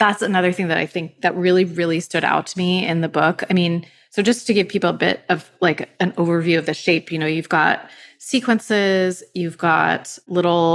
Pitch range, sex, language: 170-230 Hz, female, English